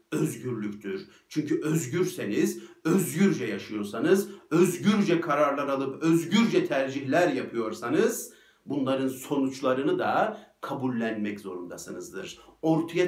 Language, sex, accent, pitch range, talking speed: Turkish, male, native, 120-170 Hz, 80 wpm